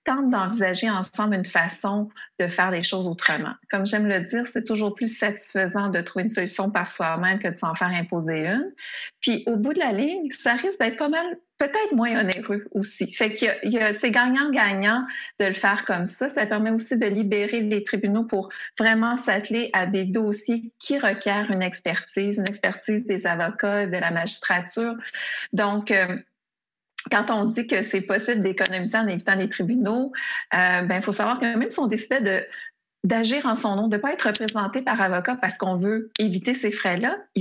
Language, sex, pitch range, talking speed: French, female, 190-235 Hz, 190 wpm